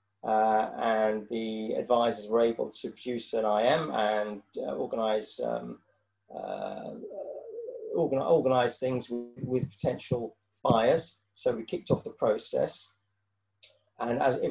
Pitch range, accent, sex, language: 110-130 Hz, British, male, English